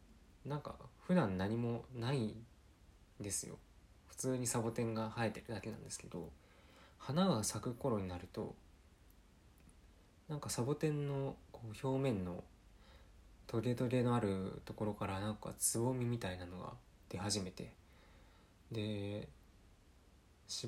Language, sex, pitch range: Japanese, male, 95-115 Hz